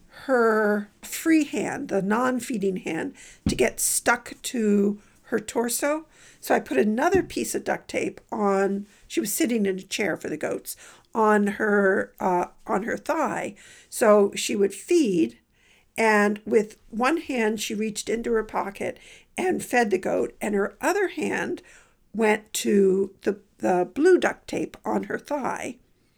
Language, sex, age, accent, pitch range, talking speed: English, female, 50-69, American, 200-250 Hz, 155 wpm